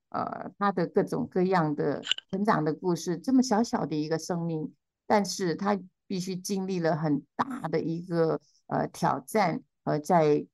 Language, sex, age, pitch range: Chinese, female, 50-69, 155-200 Hz